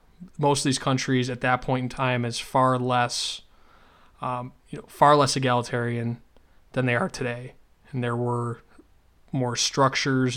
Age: 20-39